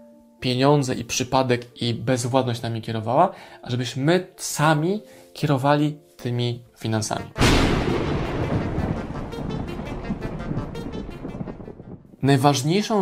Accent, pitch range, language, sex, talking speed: native, 115-140 Hz, Polish, male, 65 wpm